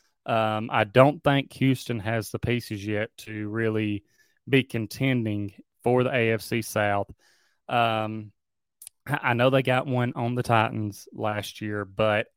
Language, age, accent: English, 30-49, American